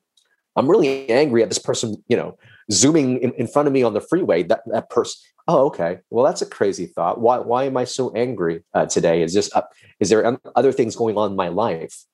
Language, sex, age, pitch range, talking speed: English, male, 30-49, 110-150 Hz, 230 wpm